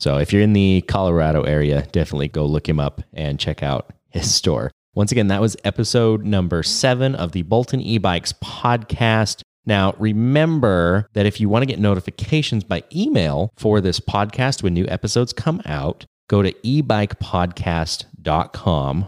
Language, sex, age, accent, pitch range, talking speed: English, male, 30-49, American, 80-115 Hz, 160 wpm